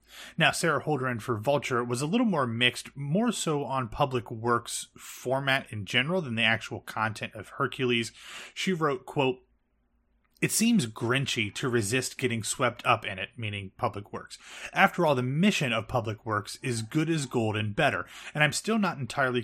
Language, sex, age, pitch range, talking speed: English, male, 30-49, 115-145 Hz, 180 wpm